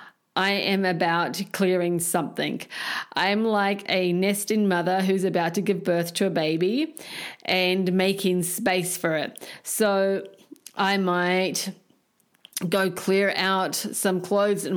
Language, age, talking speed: English, 40-59, 130 wpm